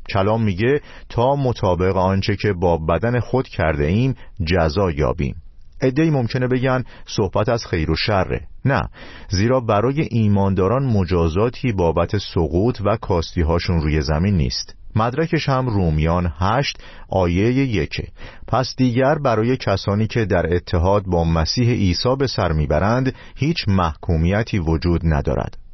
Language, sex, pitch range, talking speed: Persian, male, 85-120 Hz, 135 wpm